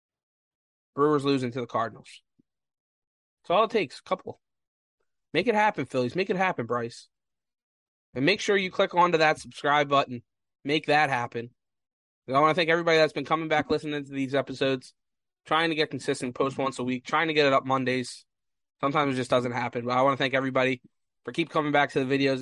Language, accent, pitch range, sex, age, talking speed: English, American, 130-155 Hz, male, 20-39, 205 wpm